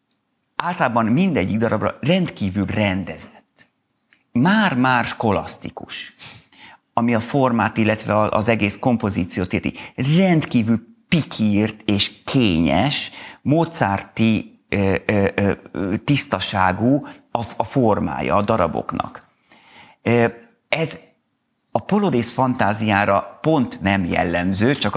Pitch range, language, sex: 100-125 Hz, Hungarian, male